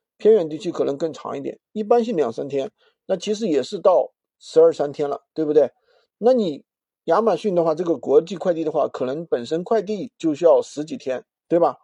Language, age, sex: Chinese, 50-69, male